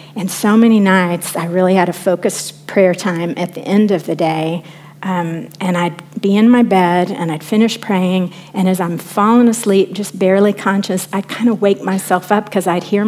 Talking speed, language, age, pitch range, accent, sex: 205 wpm, English, 50-69, 170-205 Hz, American, female